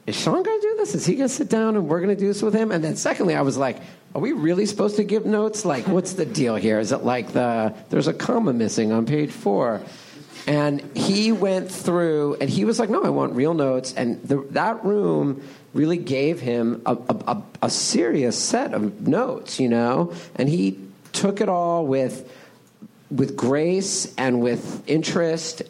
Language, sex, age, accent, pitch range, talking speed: English, male, 50-69, American, 125-180 Hz, 205 wpm